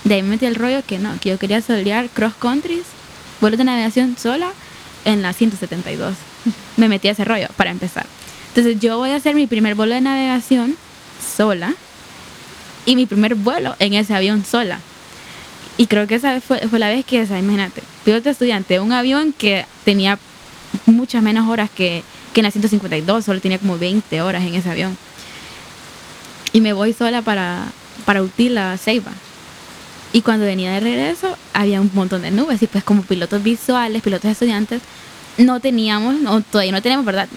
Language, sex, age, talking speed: Spanish, female, 10-29, 185 wpm